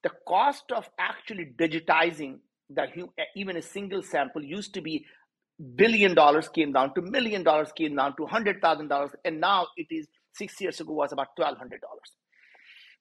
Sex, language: male, English